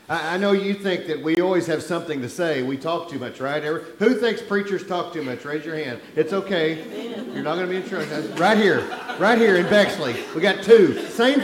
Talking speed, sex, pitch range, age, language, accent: 230 wpm, male, 180-230 Hz, 40-59, English, American